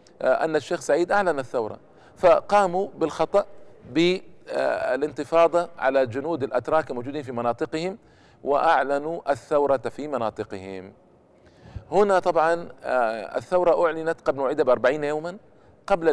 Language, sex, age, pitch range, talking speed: Arabic, male, 50-69, 125-160 Hz, 100 wpm